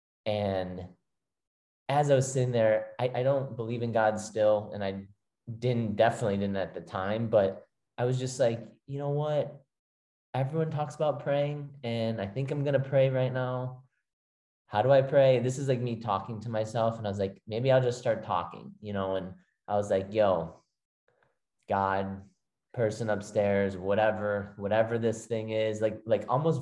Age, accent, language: 20-39, American, English